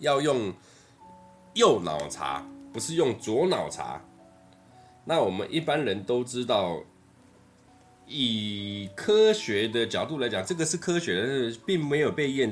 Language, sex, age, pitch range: Chinese, male, 20-39, 95-160 Hz